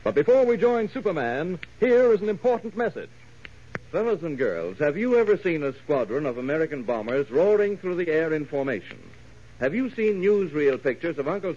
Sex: male